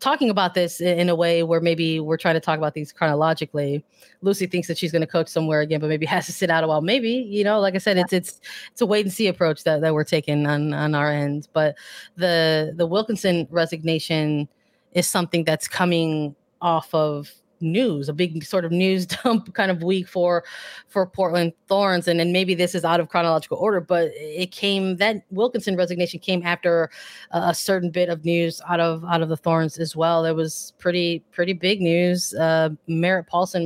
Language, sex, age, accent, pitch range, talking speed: English, female, 20-39, American, 155-180 Hz, 210 wpm